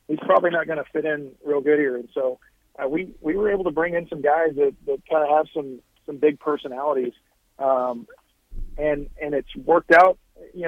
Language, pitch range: English, 135-160 Hz